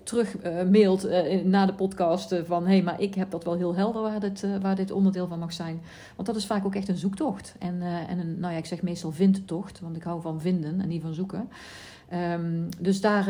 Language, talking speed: Dutch, 230 wpm